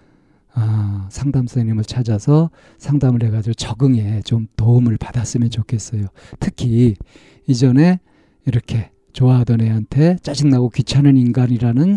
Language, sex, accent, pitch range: Korean, male, native, 110-145 Hz